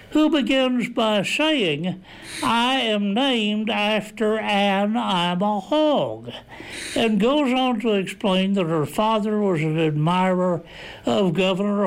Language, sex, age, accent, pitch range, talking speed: English, male, 60-79, American, 175-235 Hz, 125 wpm